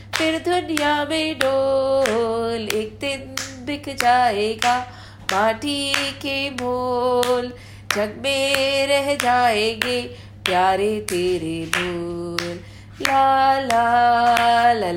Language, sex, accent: English, female, Indian